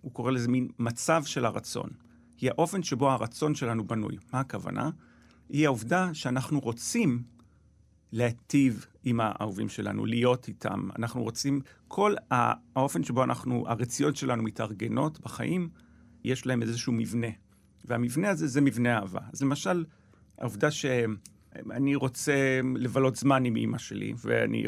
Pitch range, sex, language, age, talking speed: 115-145 Hz, male, Hebrew, 40-59, 135 wpm